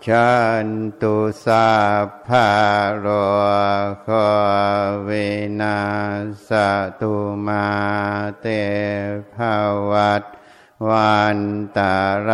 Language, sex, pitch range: Thai, male, 100-105 Hz